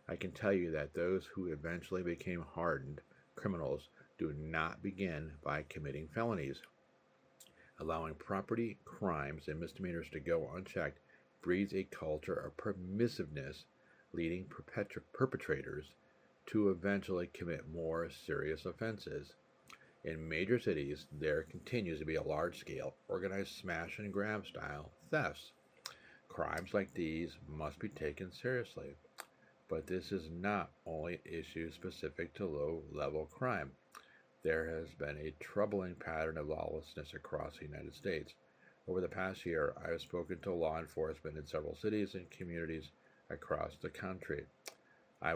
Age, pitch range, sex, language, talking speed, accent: 50-69, 80-95 Hz, male, English, 135 wpm, American